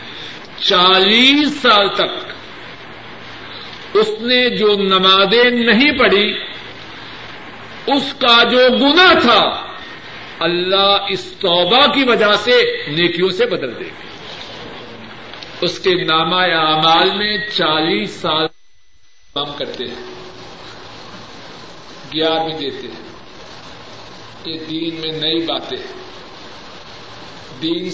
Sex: male